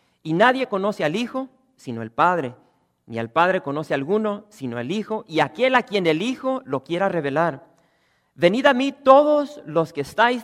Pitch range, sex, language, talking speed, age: 120-170 Hz, male, English, 195 wpm, 40-59